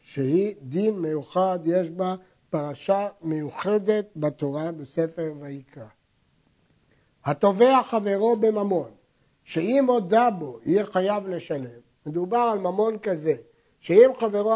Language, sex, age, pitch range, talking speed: Hebrew, male, 60-79, 170-240 Hz, 105 wpm